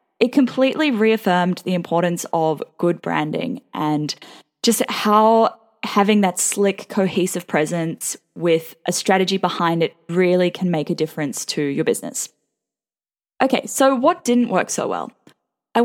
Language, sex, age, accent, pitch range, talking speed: English, female, 10-29, Australian, 175-240 Hz, 140 wpm